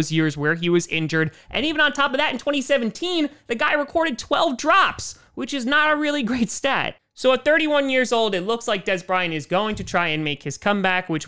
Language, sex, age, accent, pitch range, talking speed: English, male, 30-49, American, 160-230 Hz, 235 wpm